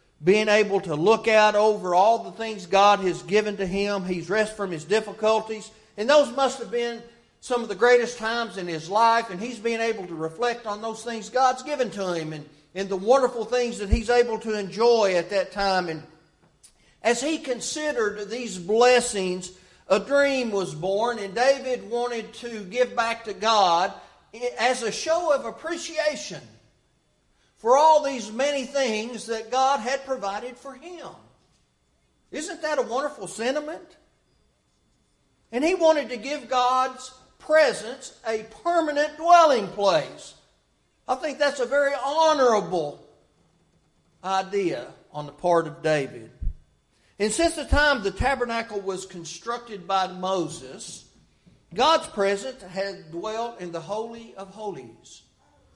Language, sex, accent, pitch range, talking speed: English, male, American, 195-255 Hz, 150 wpm